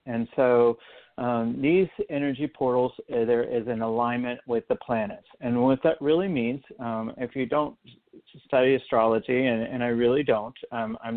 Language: English